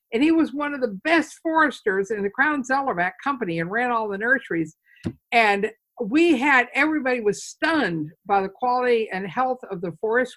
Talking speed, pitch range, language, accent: 185 wpm, 205-280 Hz, English, American